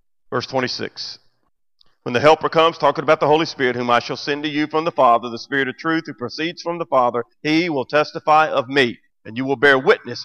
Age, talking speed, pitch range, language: 40-59, 230 wpm, 125-170 Hz, English